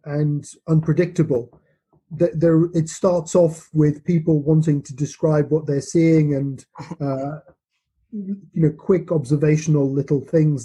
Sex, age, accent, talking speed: male, 30-49, British, 120 wpm